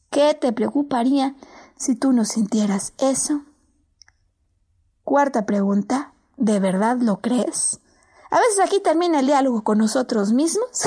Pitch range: 225-285 Hz